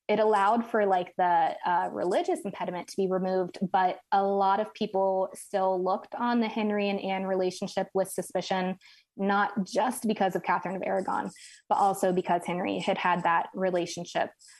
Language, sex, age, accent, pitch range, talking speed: English, female, 20-39, American, 185-200 Hz, 170 wpm